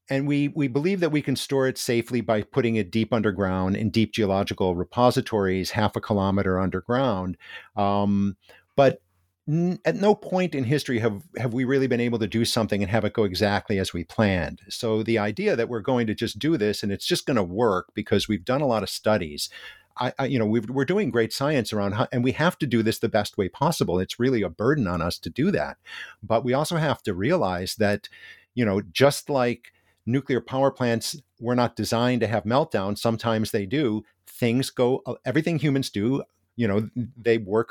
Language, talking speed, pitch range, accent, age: English, 210 wpm, 105-130 Hz, American, 50-69